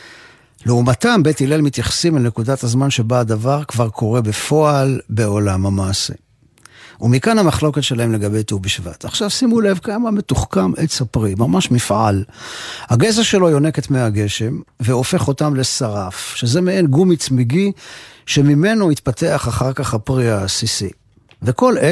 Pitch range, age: 115-160 Hz, 50-69